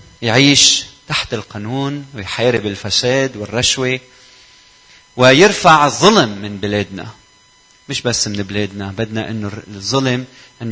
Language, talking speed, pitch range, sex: Arabic, 100 wpm, 115-145 Hz, male